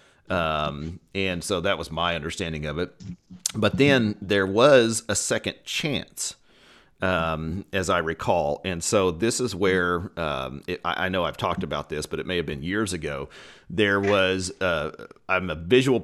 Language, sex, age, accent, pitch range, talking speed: English, male, 40-59, American, 80-100 Hz, 170 wpm